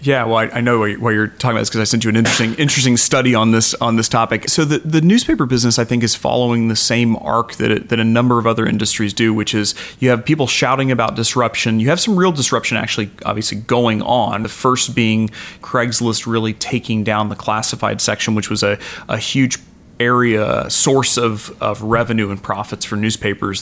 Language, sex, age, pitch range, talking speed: English, male, 30-49, 110-125 Hz, 215 wpm